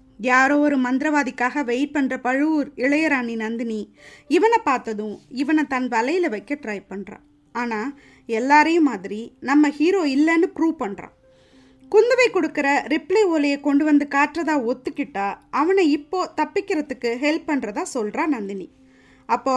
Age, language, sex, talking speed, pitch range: 20-39, Tamil, female, 125 wpm, 230-305 Hz